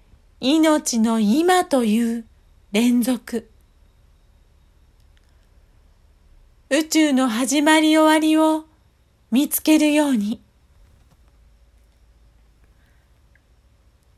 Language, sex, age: Japanese, female, 40-59